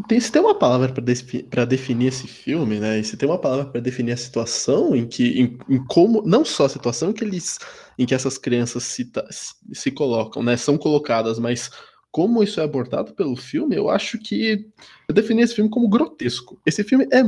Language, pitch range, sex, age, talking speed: Portuguese, 125-210 Hz, male, 20-39, 200 wpm